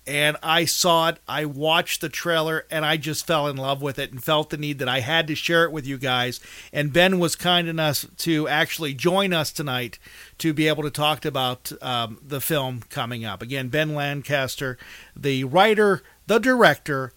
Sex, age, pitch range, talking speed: male, 40-59, 135-170 Hz, 200 wpm